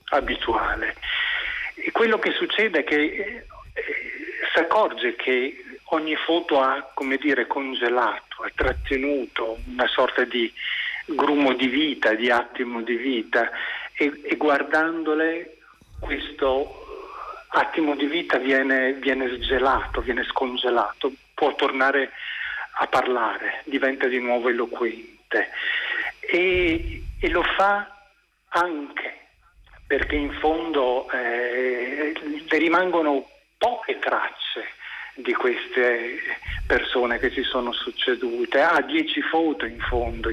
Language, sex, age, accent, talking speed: Italian, male, 50-69, native, 110 wpm